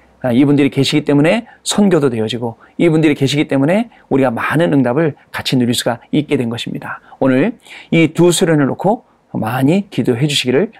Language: Korean